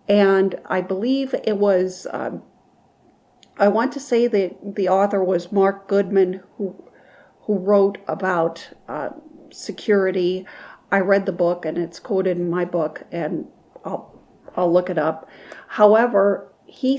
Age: 50-69